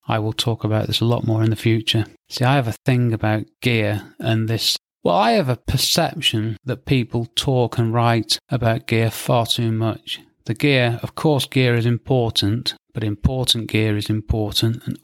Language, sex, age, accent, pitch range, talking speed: English, male, 30-49, British, 110-135 Hz, 190 wpm